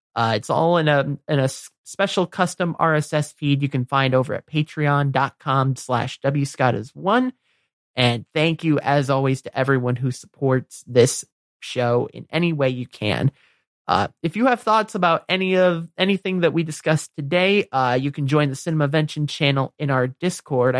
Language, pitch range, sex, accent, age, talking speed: English, 130-170 Hz, male, American, 30-49, 170 wpm